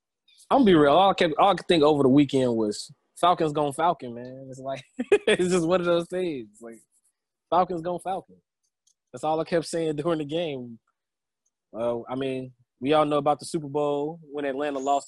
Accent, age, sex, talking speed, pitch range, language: American, 20-39, male, 210 wpm, 130-170 Hz, English